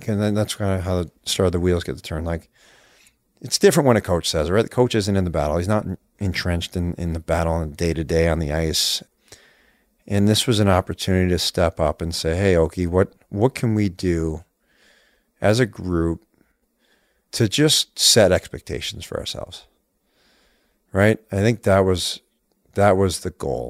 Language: English